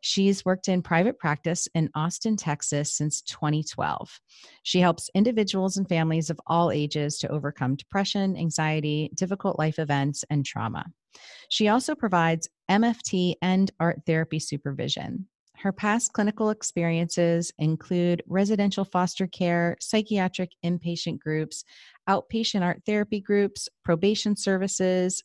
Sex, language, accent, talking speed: female, English, American, 125 wpm